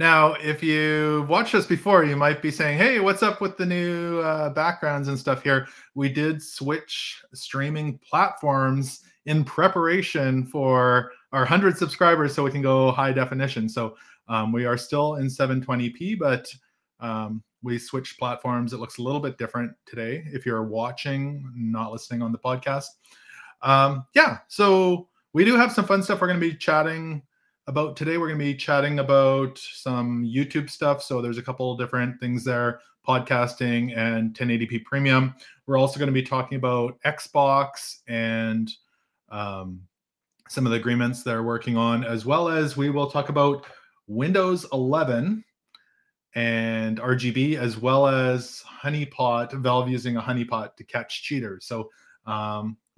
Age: 20-39